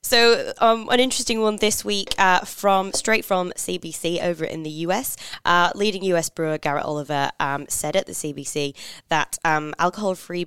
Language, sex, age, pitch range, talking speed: English, female, 20-39, 145-190 Hz, 170 wpm